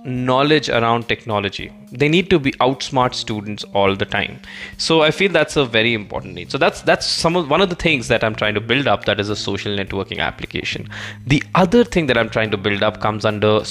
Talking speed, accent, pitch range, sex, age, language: 230 wpm, Indian, 110-150 Hz, male, 20-39, English